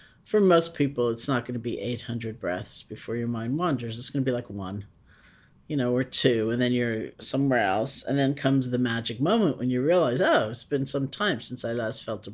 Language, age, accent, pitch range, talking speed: English, 50-69, American, 115-135 Hz, 235 wpm